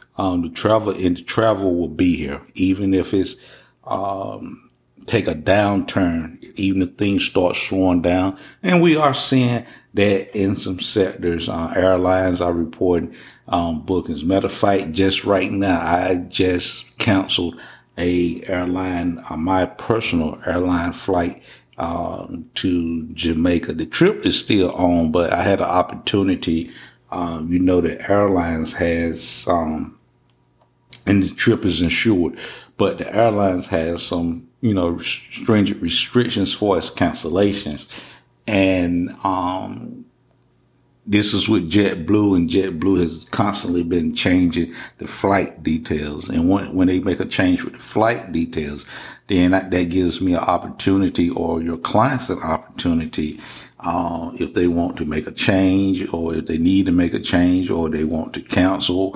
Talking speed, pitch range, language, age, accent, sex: 150 wpm, 85-95 Hz, English, 50-69, American, male